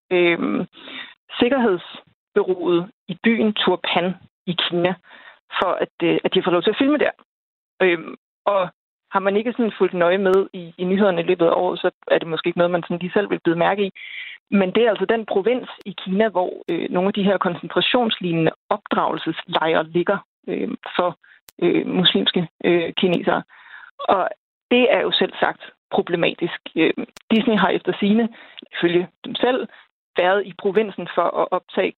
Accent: native